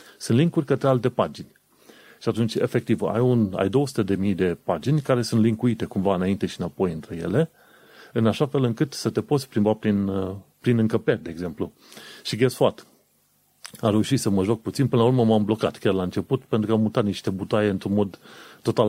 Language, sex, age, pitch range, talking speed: Romanian, male, 30-49, 100-130 Hz, 200 wpm